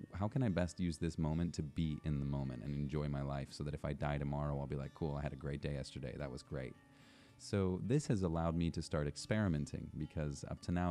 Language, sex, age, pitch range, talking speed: English, male, 30-49, 75-85 Hz, 260 wpm